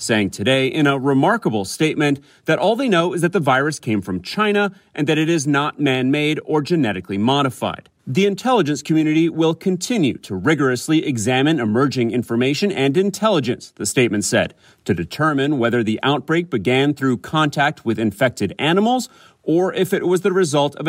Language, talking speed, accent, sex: English, 170 wpm, American, male